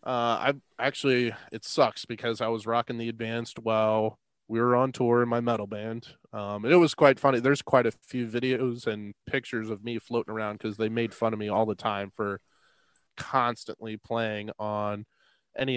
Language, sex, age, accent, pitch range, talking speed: English, male, 20-39, American, 110-125 Hz, 195 wpm